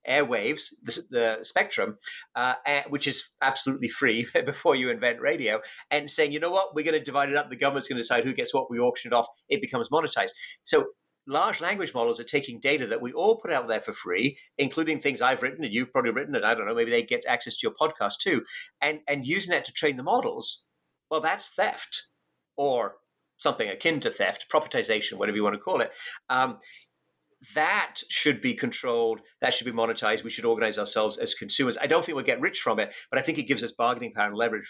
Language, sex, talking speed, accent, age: English, male, 225 wpm, British, 40-59